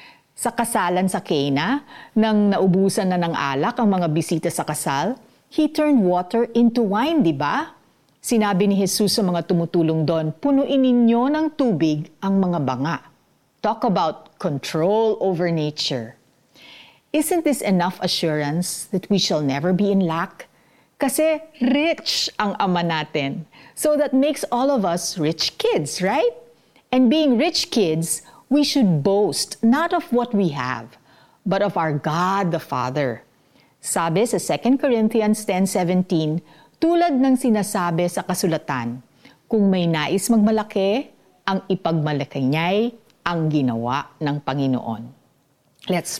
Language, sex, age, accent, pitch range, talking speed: Filipino, female, 50-69, native, 160-235 Hz, 135 wpm